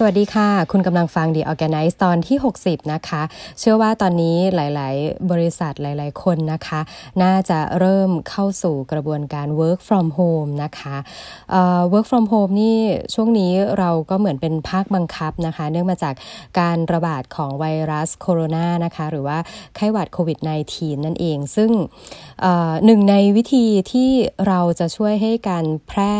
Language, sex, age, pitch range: Thai, female, 20-39, 155-190 Hz